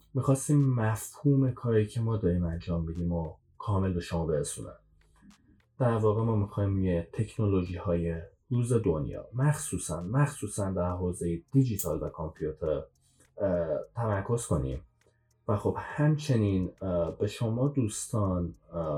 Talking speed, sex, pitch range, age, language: 115 wpm, male, 90-125 Hz, 30-49, Persian